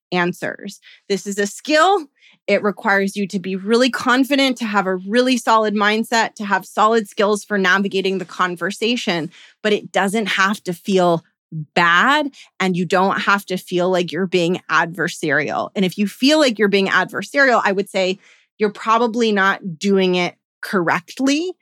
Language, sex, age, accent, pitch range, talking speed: English, female, 20-39, American, 180-215 Hz, 165 wpm